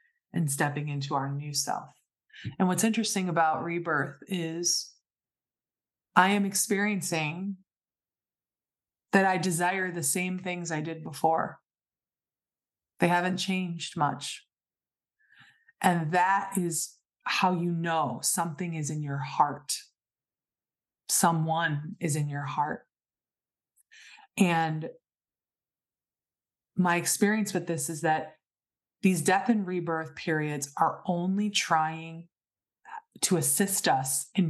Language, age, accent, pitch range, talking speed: English, 20-39, American, 150-180 Hz, 110 wpm